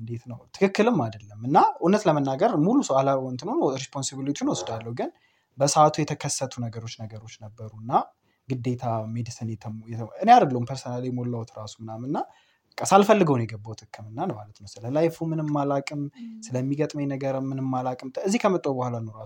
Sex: male